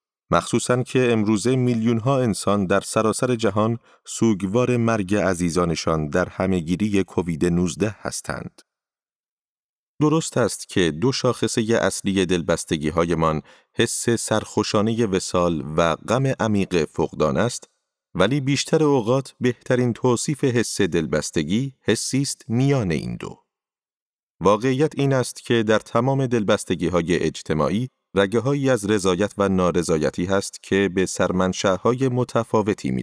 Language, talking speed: Persian, 120 wpm